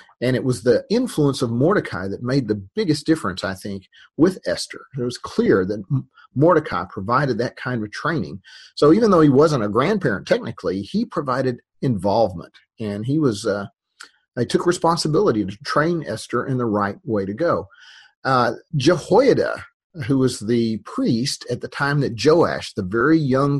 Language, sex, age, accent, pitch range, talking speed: English, male, 40-59, American, 110-155 Hz, 170 wpm